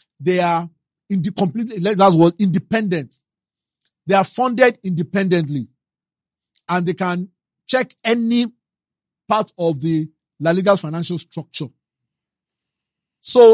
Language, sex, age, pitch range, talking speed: English, male, 50-69, 155-195 Hz, 110 wpm